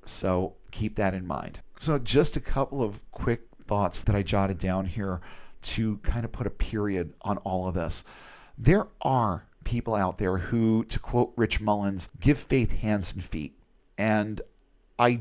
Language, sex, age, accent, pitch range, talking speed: English, male, 40-59, American, 100-120 Hz, 175 wpm